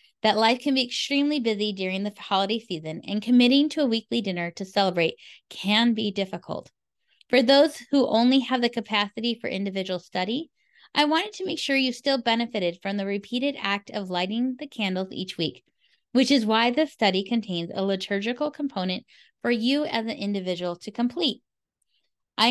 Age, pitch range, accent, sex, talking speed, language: 10-29, 190-260 Hz, American, female, 175 wpm, English